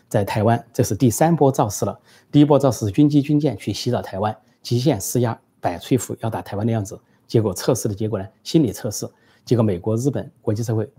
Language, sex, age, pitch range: Chinese, male, 30-49, 105-130 Hz